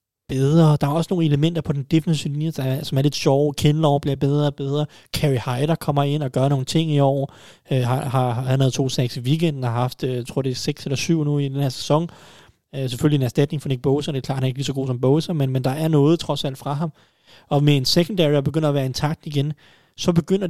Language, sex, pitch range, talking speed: Danish, male, 130-160 Hz, 265 wpm